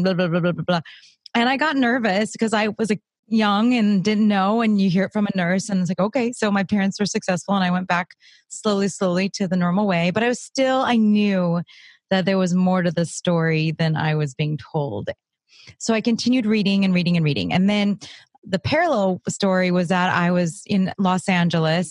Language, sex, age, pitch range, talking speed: English, female, 30-49, 170-215 Hz, 220 wpm